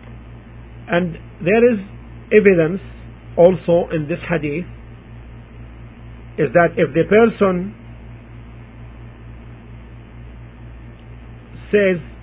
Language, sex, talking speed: English, male, 70 wpm